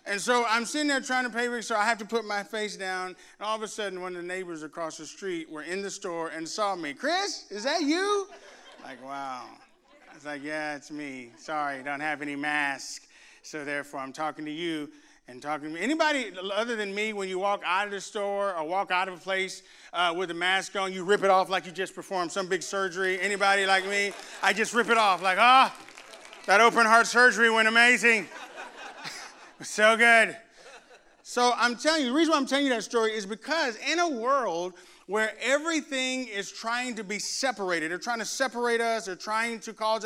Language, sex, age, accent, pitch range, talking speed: English, male, 30-49, American, 185-240 Hz, 220 wpm